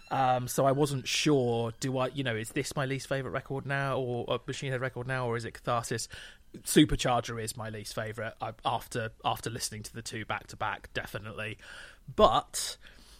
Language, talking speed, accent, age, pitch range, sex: English, 190 wpm, British, 30-49, 120-155 Hz, male